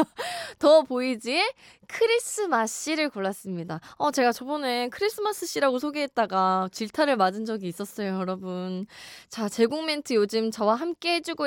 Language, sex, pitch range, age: Korean, female, 185-310 Hz, 20-39